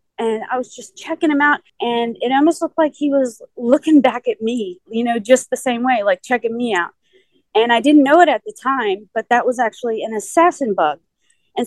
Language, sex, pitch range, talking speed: English, female, 215-275 Hz, 225 wpm